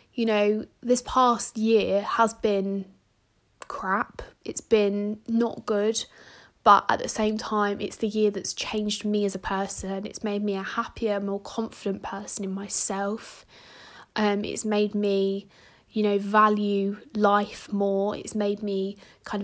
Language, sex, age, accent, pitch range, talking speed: English, female, 20-39, British, 195-215 Hz, 150 wpm